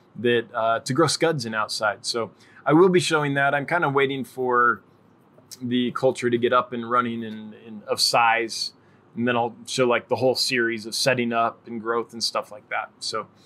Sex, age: male, 20-39